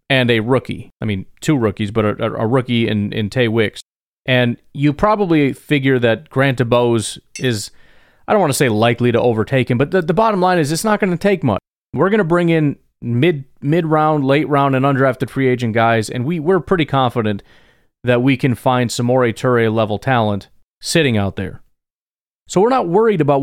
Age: 30-49